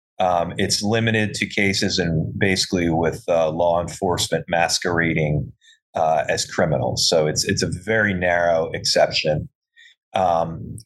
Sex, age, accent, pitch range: male, 30-49, American, 85-110 Hz